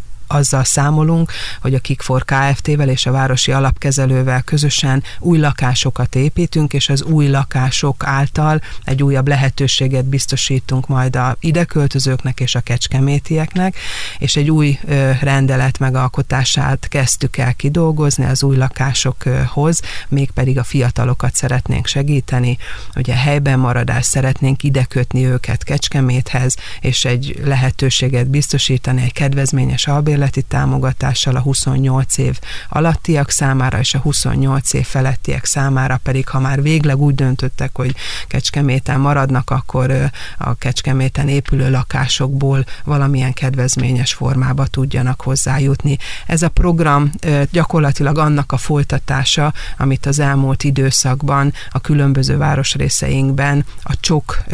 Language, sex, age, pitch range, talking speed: Hungarian, female, 40-59, 130-145 Hz, 120 wpm